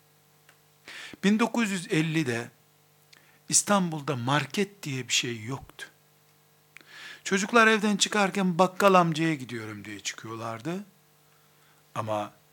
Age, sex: 60-79, male